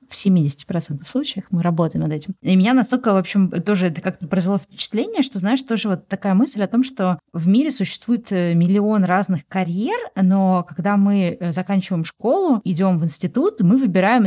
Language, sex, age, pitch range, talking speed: Russian, female, 30-49, 165-205 Hz, 175 wpm